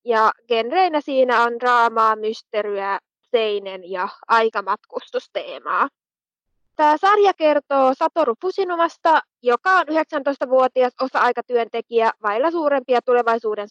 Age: 20-39